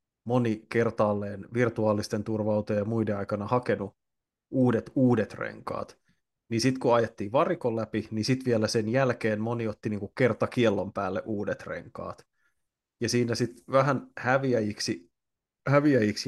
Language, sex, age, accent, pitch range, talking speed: Finnish, male, 20-39, native, 105-120 Hz, 125 wpm